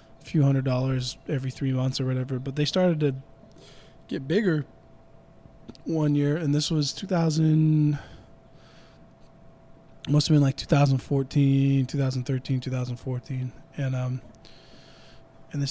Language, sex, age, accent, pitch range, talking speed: English, male, 20-39, American, 135-160 Hz, 120 wpm